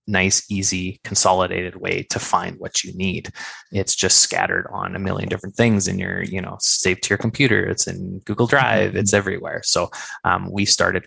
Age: 20-39